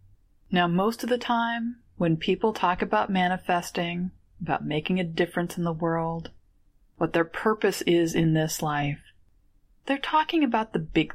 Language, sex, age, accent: English, female, 30-49, American